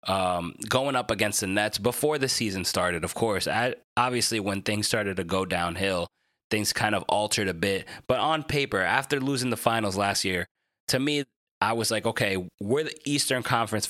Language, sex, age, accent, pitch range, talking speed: English, male, 20-39, American, 100-130 Hz, 195 wpm